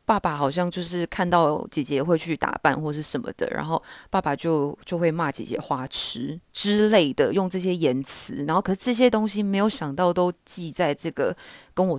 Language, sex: Chinese, female